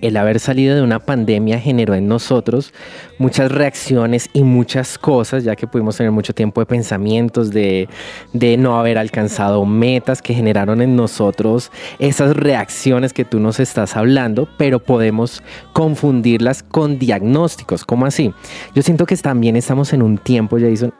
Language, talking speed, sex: Spanish, 155 wpm, male